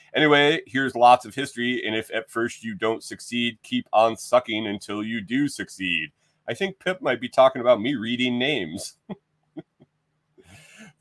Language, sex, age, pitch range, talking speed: English, male, 30-49, 105-130 Hz, 160 wpm